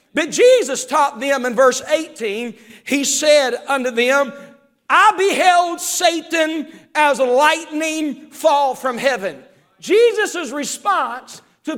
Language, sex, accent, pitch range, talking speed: English, male, American, 250-310 Hz, 110 wpm